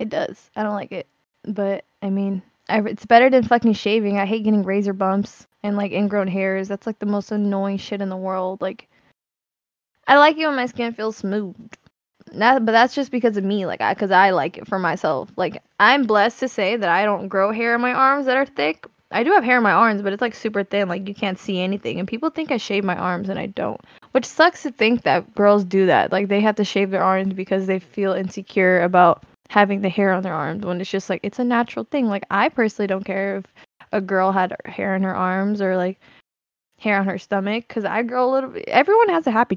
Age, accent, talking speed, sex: 10-29, American, 245 wpm, female